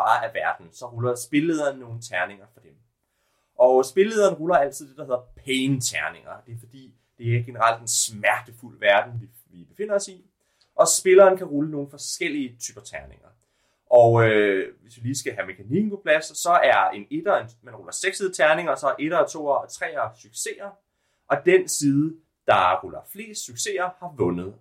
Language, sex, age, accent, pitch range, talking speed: Danish, male, 30-49, native, 120-185 Hz, 180 wpm